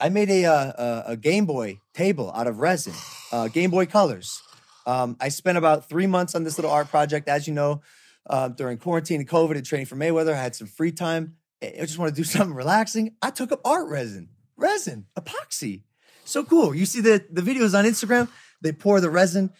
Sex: male